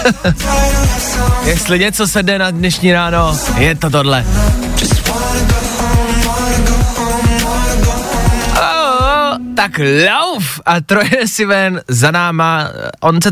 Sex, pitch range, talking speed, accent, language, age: male, 125-175 Hz, 95 wpm, native, Czech, 20-39